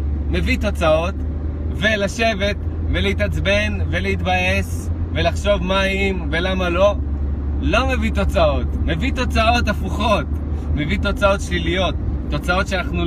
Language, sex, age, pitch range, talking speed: Hebrew, male, 20-39, 75-85 Hz, 95 wpm